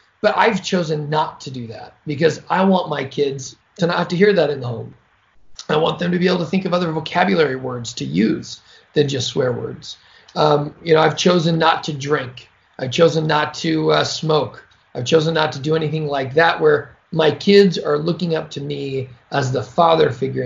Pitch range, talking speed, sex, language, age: 140-185 Hz, 215 wpm, male, English, 40-59